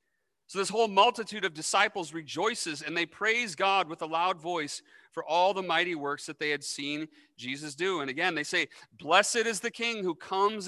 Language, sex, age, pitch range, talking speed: English, male, 40-59, 165-220 Hz, 200 wpm